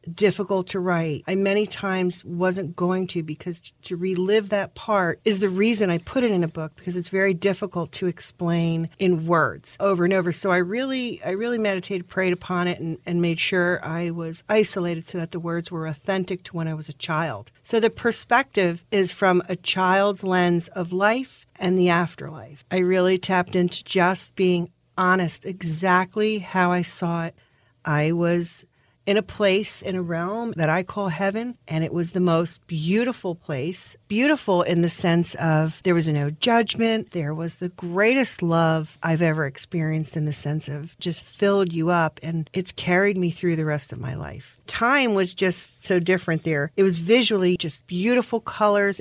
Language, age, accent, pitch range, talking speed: English, 50-69, American, 165-195 Hz, 185 wpm